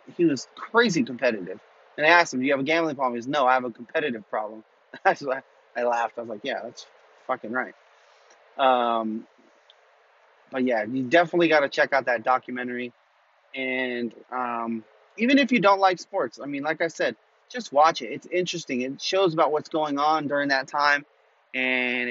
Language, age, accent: English, 30-49, American